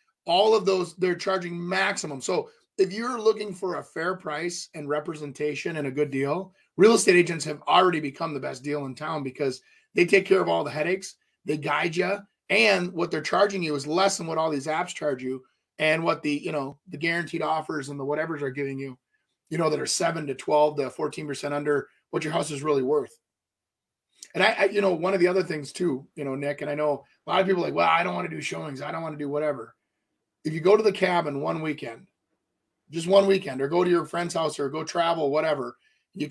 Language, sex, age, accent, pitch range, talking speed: English, male, 30-49, American, 145-190 Hz, 240 wpm